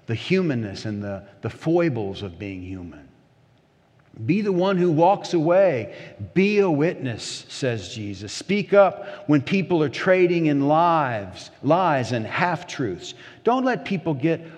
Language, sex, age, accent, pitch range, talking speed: English, male, 50-69, American, 125-170 Hz, 145 wpm